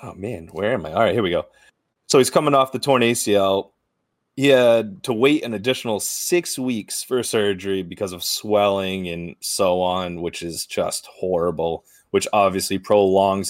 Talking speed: 180 wpm